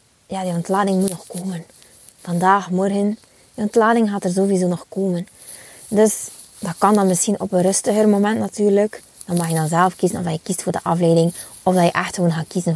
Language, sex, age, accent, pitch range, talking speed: Dutch, female, 20-39, Dutch, 200-275 Hz, 205 wpm